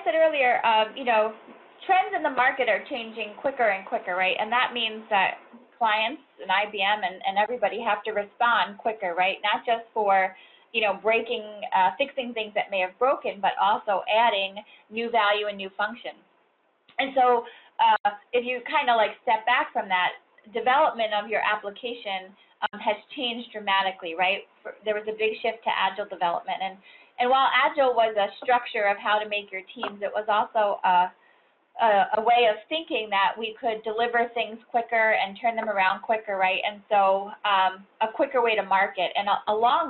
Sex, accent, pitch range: female, American, 200-240 Hz